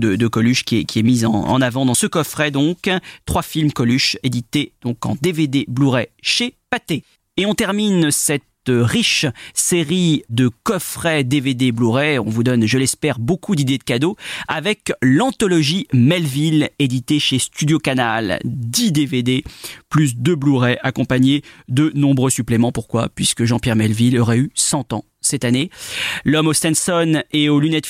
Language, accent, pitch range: French, French, 125-155 Hz